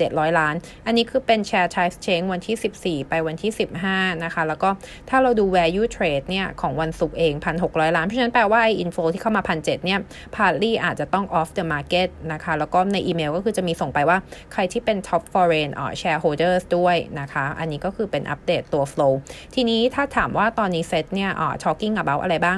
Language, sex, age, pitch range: Thai, female, 30-49, 160-210 Hz